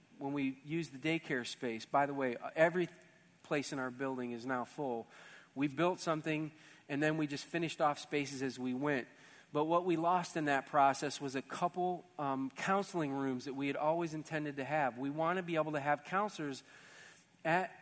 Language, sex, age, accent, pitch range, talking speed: English, male, 40-59, American, 145-180 Hz, 200 wpm